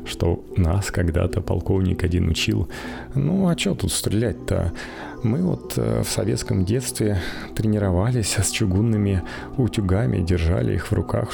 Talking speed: 125 wpm